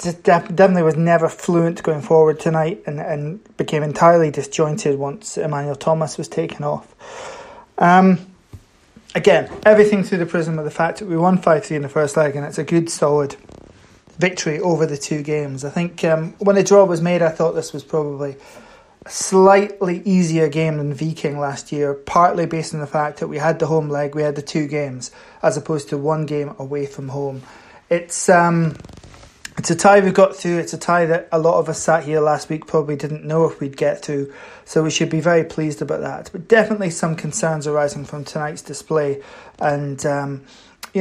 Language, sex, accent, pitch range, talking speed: English, male, British, 145-175 Hz, 200 wpm